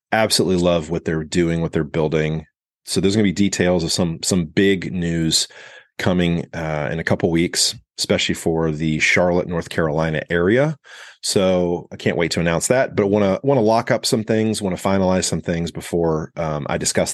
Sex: male